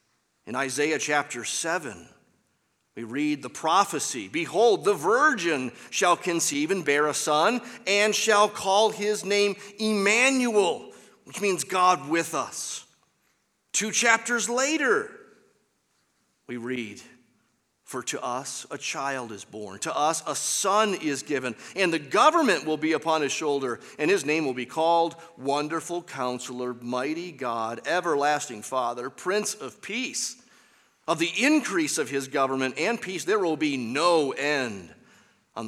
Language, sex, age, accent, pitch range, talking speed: English, male, 40-59, American, 130-195 Hz, 140 wpm